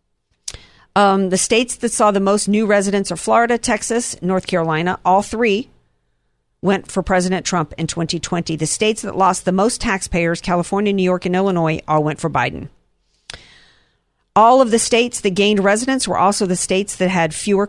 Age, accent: 50-69, American